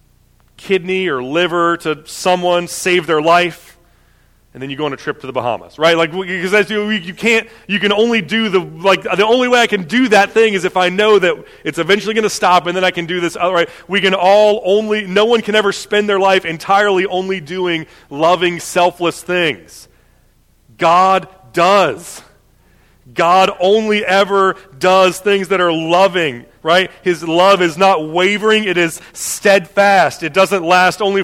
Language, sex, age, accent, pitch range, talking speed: English, male, 30-49, American, 155-195 Hz, 180 wpm